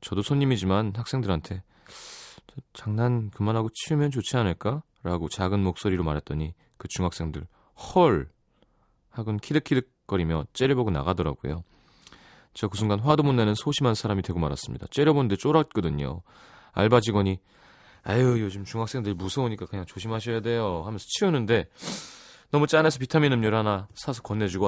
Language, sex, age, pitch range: Korean, male, 30-49, 85-125 Hz